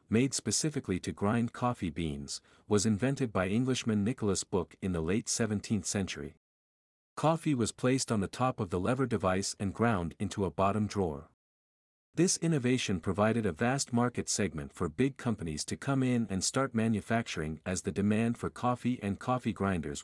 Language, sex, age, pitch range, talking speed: English, male, 50-69, 90-125 Hz, 170 wpm